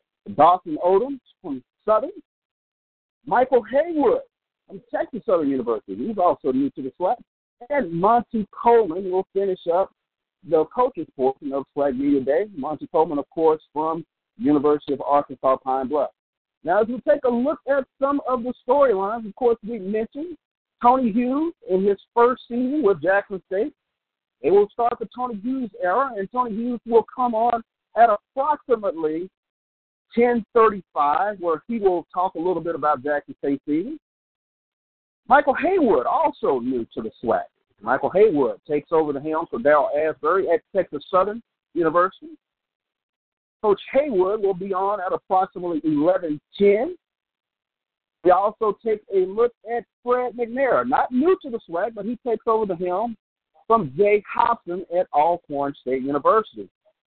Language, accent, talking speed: English, American, 150 wpm